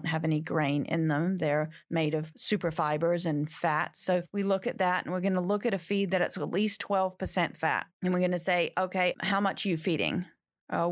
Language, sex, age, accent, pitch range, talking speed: English, female, 40-59, American, 165-200 Hz, 235 wpm